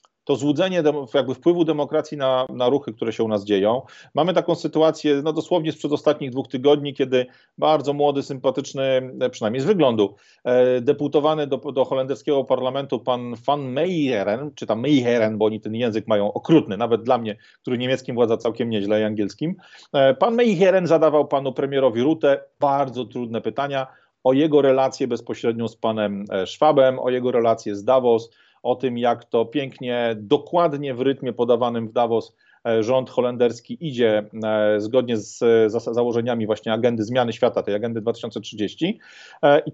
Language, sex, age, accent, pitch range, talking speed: Polish, male, 40-59, native, 120-145 Hz, 155 wpm